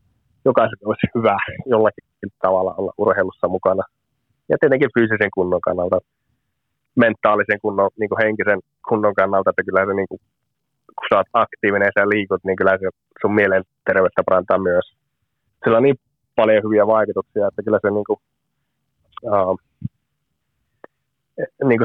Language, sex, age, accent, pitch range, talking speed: Finnish, male, 20-39, native, 100-125 Hz, 145 wpm